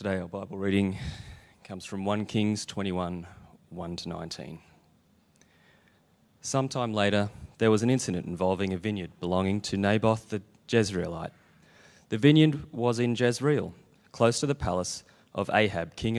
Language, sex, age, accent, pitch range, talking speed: English, male, 30-49, Australian, 95-125 Hz, 145 wpm